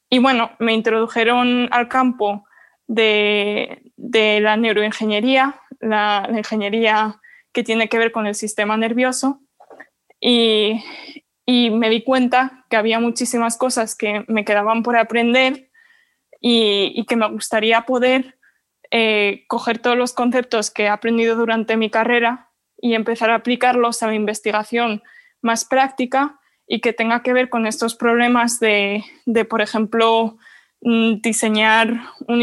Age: 20-39